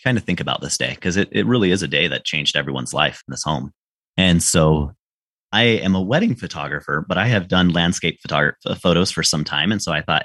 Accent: American